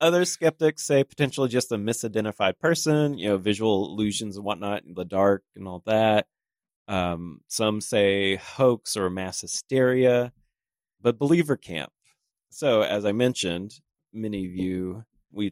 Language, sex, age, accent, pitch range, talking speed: English, male, 30-49, American, 100-135 Hz, 145 wpm